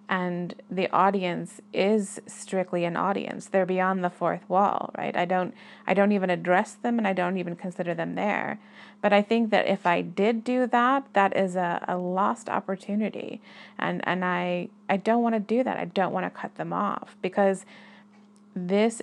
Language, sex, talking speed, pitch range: English, female, 190 wpm, 185-210 Hz